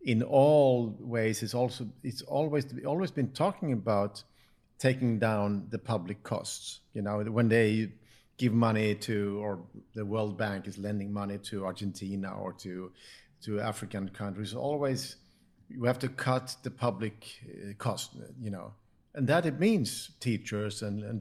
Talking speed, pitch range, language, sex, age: 155 wpm, 105-130 Hz, English, male, 50-69